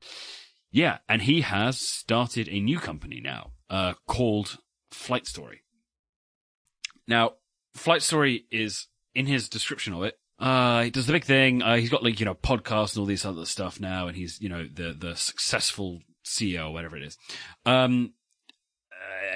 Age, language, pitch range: 30-49, English, 90-115 Hz